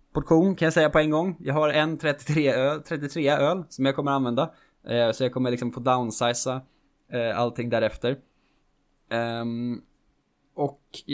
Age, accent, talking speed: 20-39, Norwegian, 145 wpm